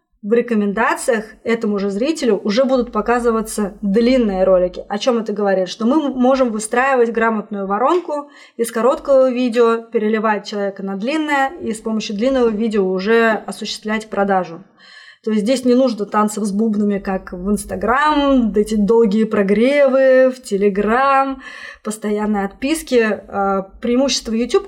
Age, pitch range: 20-39, 210-255 Hz